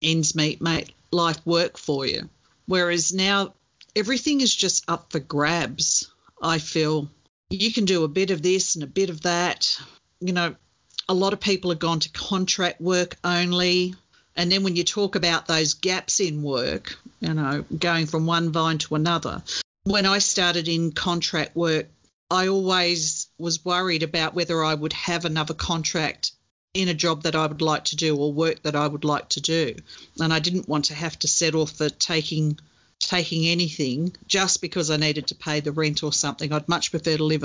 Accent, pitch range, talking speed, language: Australian, 155-185 Hz, 190 wpm, English